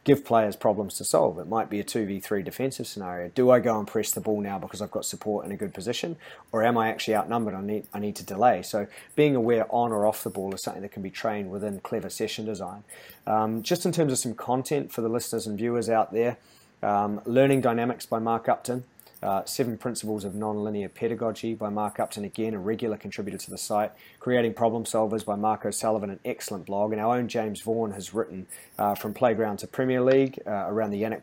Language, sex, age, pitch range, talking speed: English, male, 30-49, 100-120 Hz, 230 wpm